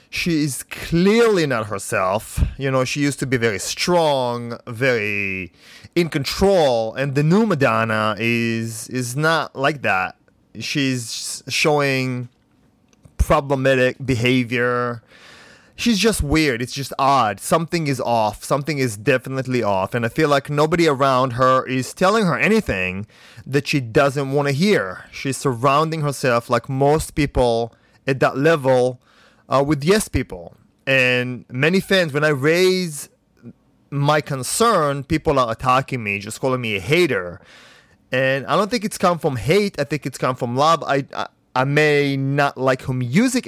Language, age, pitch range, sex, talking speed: English, 30-49, 125-155 Hz, male, 155 wpm